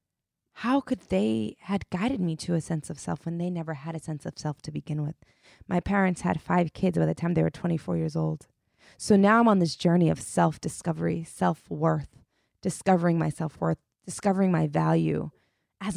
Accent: American